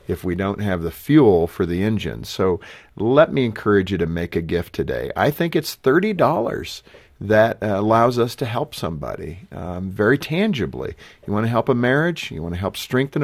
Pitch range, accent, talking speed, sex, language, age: 90-115 Hz, American, 195 wpm, male, English, 50-69